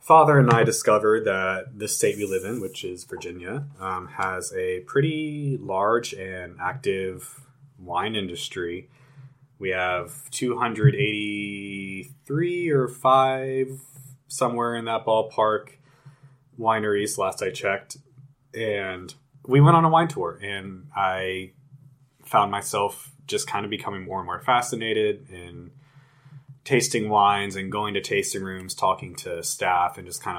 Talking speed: 135 wpm